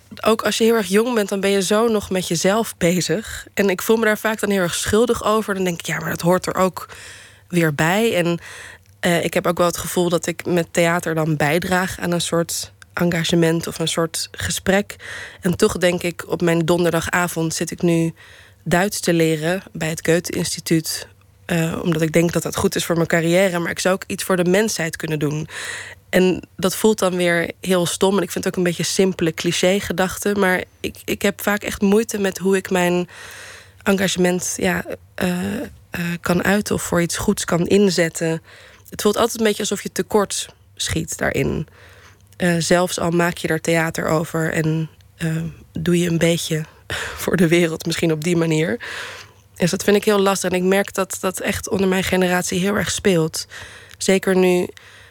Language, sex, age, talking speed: Dutch, female, 20-39, 200 wpm